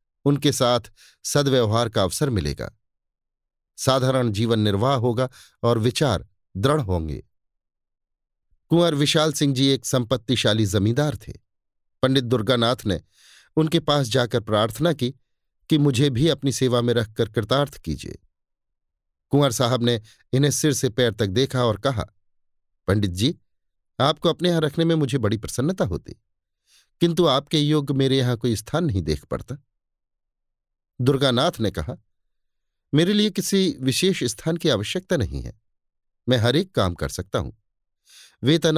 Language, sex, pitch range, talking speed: Hindi, male, 105-145 Hz, 140 wpm